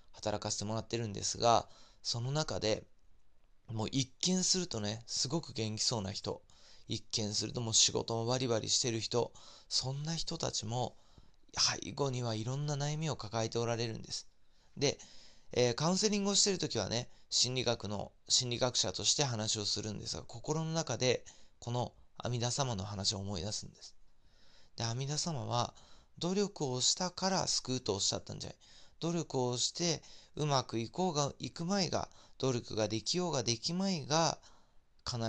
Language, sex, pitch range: Japanese, male, 110-145 Hz